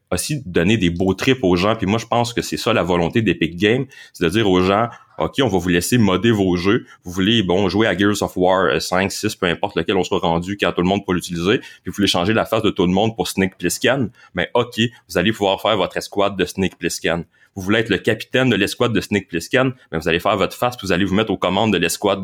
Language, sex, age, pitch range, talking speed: French, male, 30-49, 85-110 Hz, 285 wpm